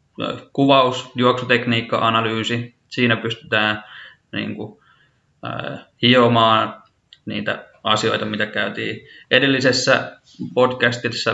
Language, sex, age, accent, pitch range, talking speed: Finnish, male, 20-39, native, 105-115 Hz, 80 wpm